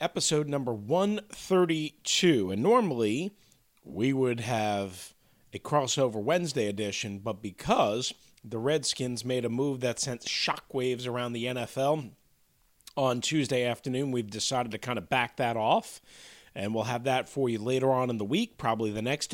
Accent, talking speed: American, 155 wpm